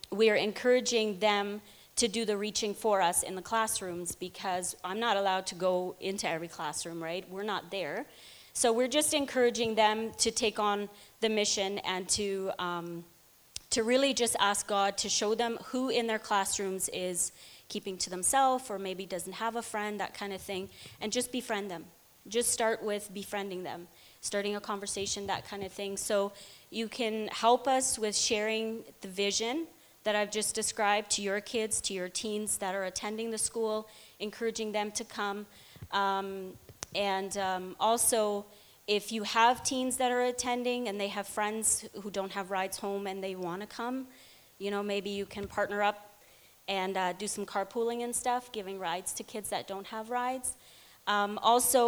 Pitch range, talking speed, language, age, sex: 195-225 Hz, 180 wpm, English, 30-49, female